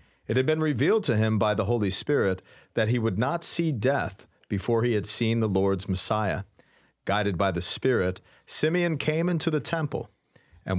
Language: English